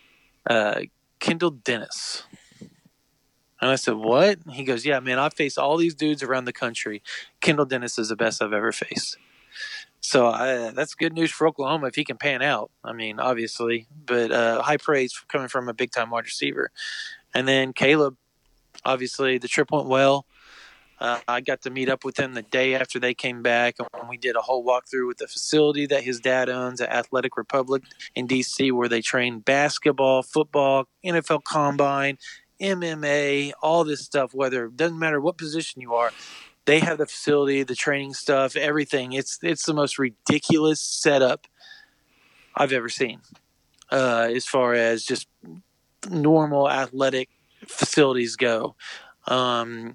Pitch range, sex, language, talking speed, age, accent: 125-150 Hz, male, English, 165 wpm, 20-39, American